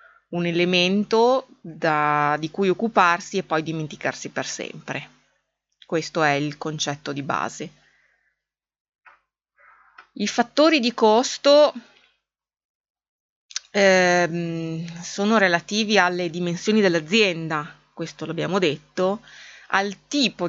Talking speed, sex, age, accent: 90 wpm, female, 20-39, native